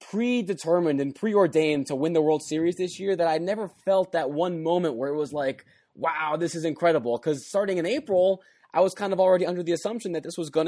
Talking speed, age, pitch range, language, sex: 230 wpm, 20-39, 130-170 Hz, English, male